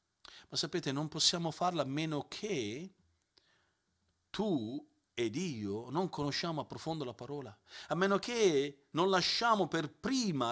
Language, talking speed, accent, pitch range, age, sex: Italian, 135 wpm, native, 110-155 Hz, 40-59, male